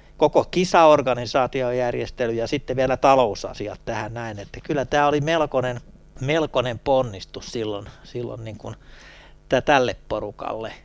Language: Finnish